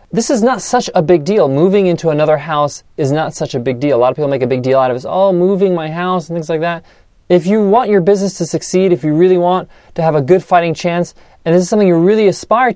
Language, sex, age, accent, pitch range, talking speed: English, male, 30-49, American, 155-190 Hz, 285 wpm